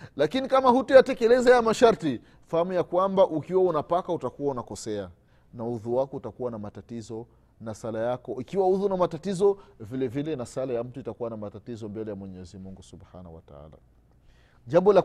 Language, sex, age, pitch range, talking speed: Swahili, male, 30-49, 120-190 Hz, 175 wpm